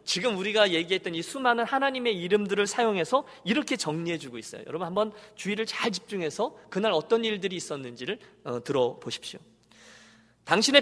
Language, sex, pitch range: Korean, male, 180-225 Hz